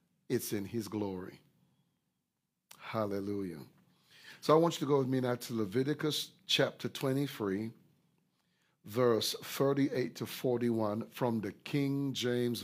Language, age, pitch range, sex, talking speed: English, 50-69, 120-160 Hz, male, 125 wpm